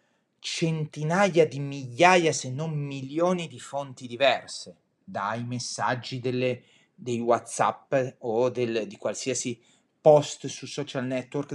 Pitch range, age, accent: 125-175 Hz, 30-49, native